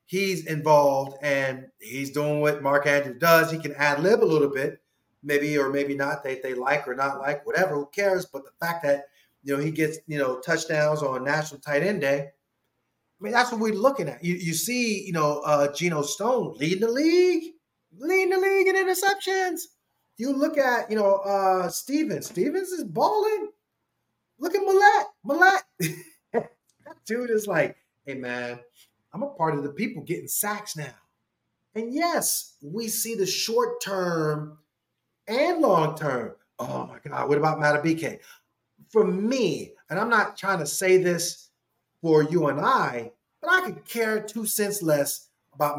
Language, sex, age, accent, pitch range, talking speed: English, male, 30-49, American, 145-225 Hz, 175 wpm